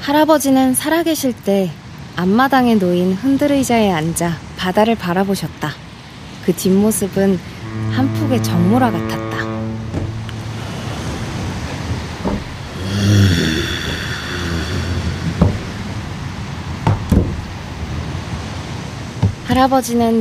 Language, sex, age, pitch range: Korean, female, 50-69, 150-235 Hz